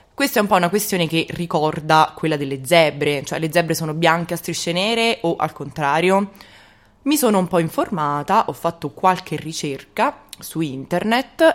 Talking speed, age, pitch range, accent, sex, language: 170 wpm, 20-39, 150-190 Hz, native, female, Italian